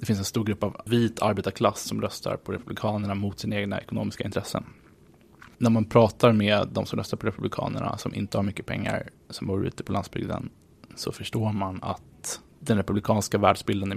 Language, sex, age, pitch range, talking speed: English, male, 20-39, 95-110 Hz, 190 wpm